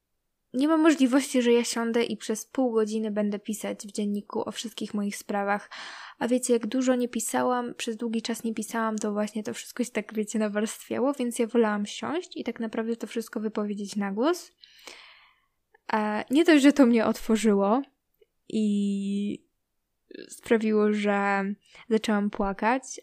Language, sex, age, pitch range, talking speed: Polish, female, 10-29, 210-240 Hz, 155 wpm